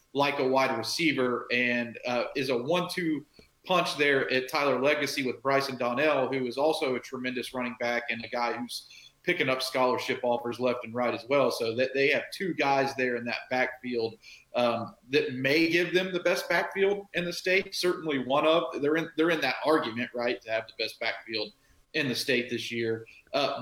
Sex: male